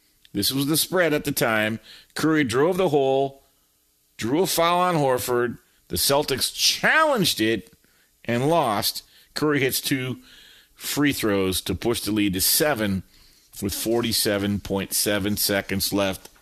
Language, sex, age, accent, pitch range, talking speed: English, male, 50-69, American, 110-155 Hz, 135 wpm